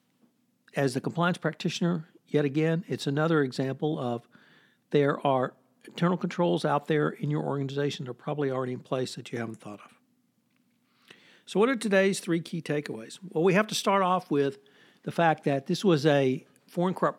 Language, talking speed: English, 180 wpm